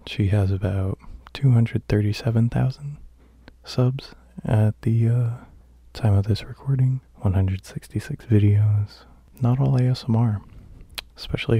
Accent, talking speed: American, 90 wpm